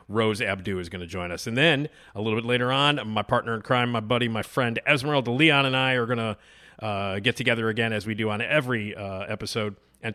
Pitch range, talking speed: 105-135 Hz, 240 wpm